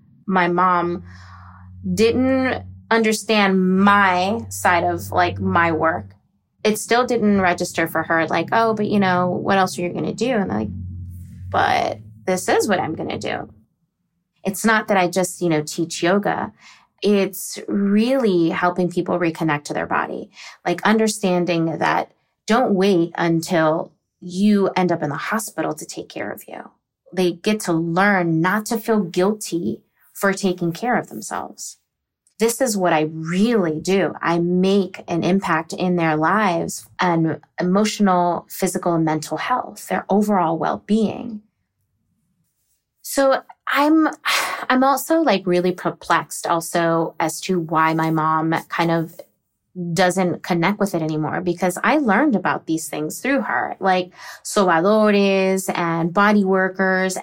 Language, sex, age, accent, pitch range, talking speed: English, female, 20-39, American, 165-205 Hz, 145 wpm